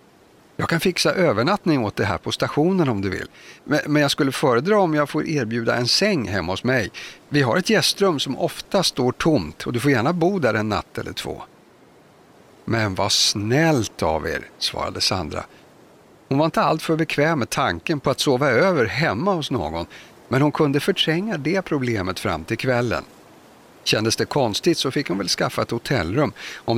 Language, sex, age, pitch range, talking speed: Swedish, male, 50-69, 110-160 Hz, 190 wpm